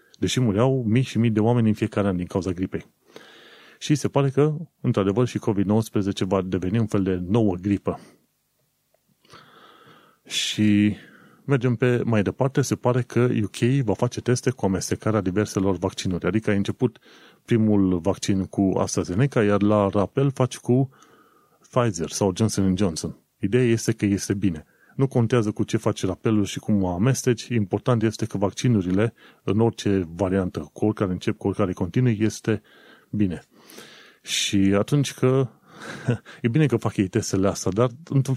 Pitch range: 100-120 Hz